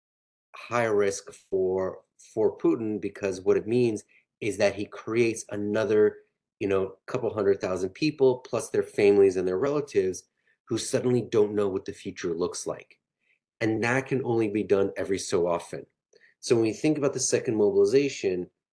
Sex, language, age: male, English, 30-49